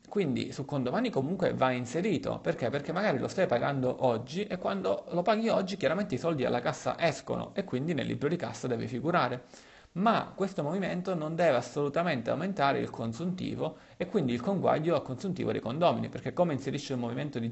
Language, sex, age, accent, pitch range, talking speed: Italian, male, 30-49, native, 125-165 Hz, 185 wpm